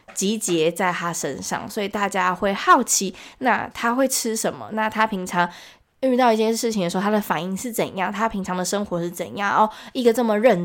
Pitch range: 180-240 Hz